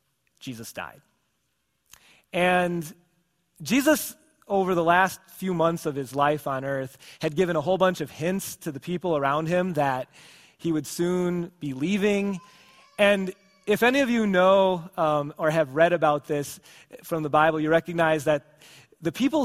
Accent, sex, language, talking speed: American, male, English, 160 wpm